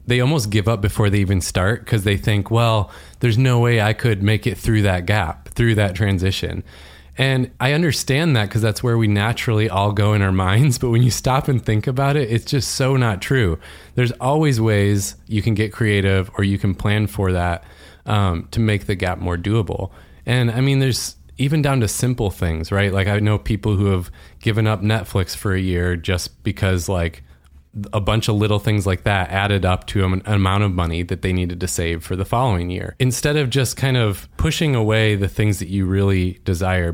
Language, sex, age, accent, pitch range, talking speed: English, male, 20-39, American, 90-120 Hz, 215 wpm